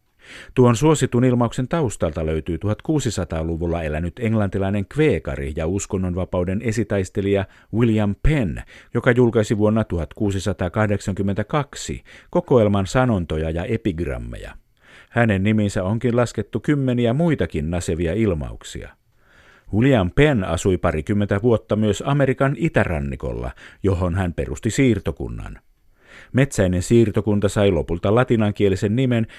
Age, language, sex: 50-69, Finnish, male